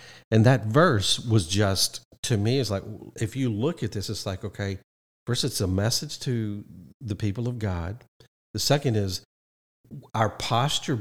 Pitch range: 95-115 Hz